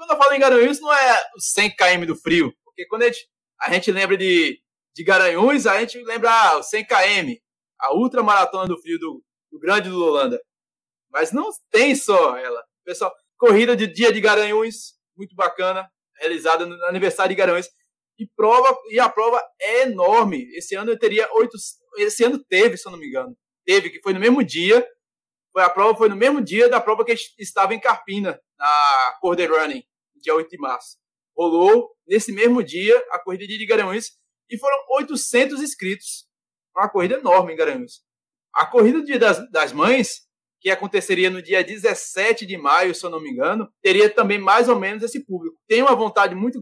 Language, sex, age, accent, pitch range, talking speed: Portuguese, male, 20-39, Brazilian, 190-280 Hz, 190 wpm